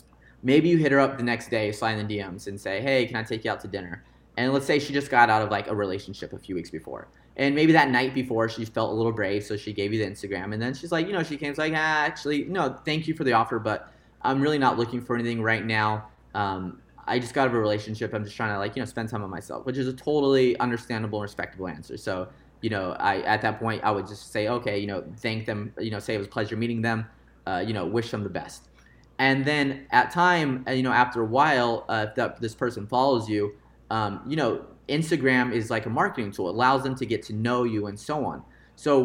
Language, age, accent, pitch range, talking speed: English, 20-39, American, 105-130 Hz, 270 wpm